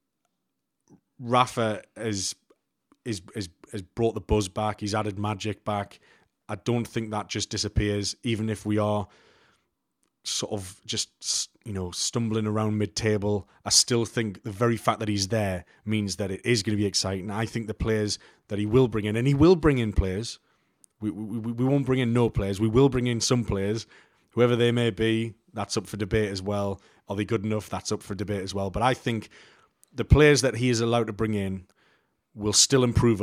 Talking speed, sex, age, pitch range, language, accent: 200 wpm, male, 30-49, 105-115 Hz, English, British